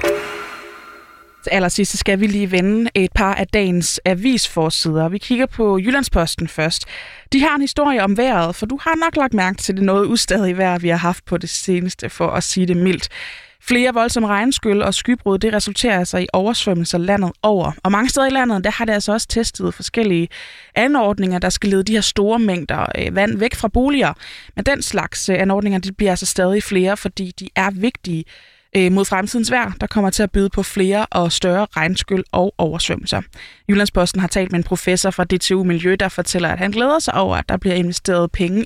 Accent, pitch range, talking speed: native, 180-220 Hz, 200 wpm